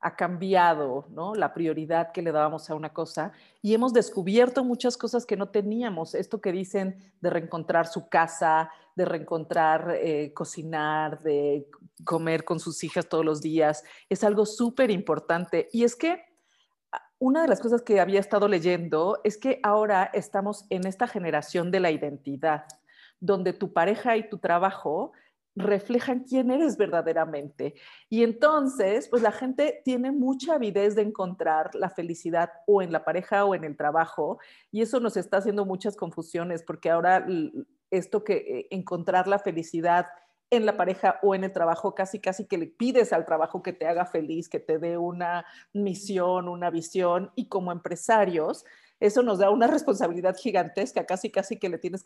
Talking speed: 170 wpm